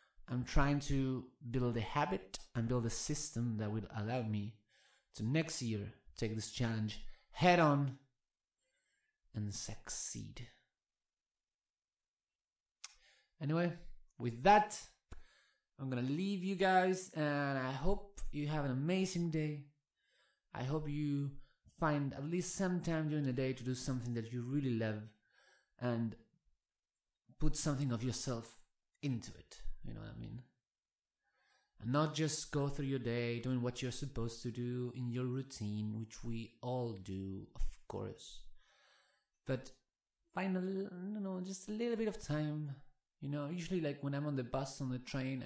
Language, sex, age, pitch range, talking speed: English, male, 30-49, 110-145 Hz, 155 wpm